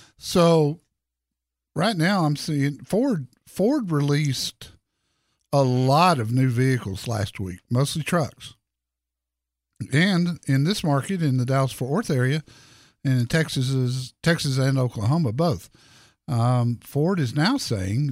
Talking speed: 125 wpm